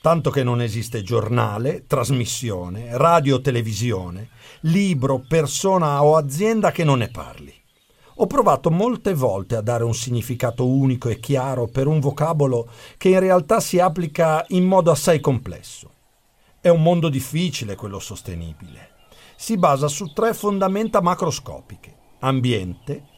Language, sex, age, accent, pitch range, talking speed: Italian, male, 50-69, native, 125-185 Hz, 135 wpm